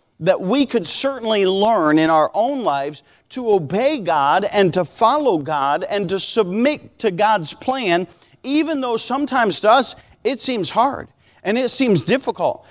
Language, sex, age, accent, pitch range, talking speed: English, male, 40-59, American, 170-245 Hz, 160 wpm